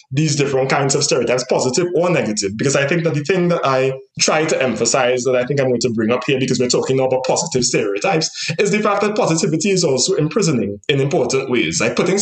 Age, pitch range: 20-39, 130-170 Hz